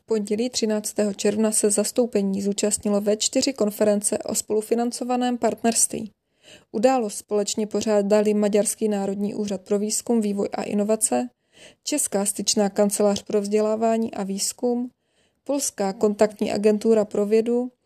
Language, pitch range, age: Czech, 205-230 Hz, 20-39